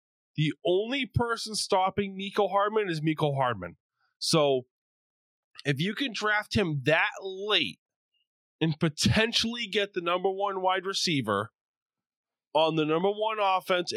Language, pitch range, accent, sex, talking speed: English, 150-210 Hz, American, male, 130 wpm